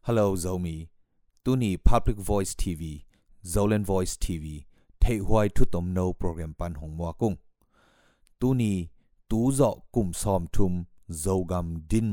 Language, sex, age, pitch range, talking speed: English, male, 30-49, 85-105 Hz, 70 wpm